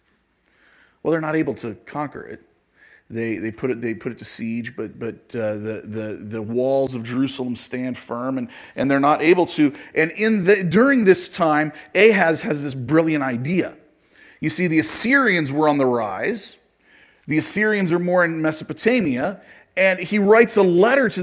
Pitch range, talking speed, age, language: 125-205 Hz, 180 wpm, 30-49, English